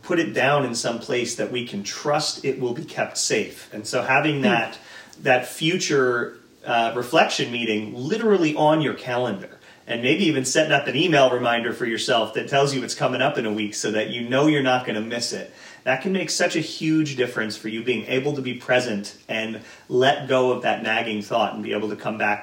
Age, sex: 40-59, male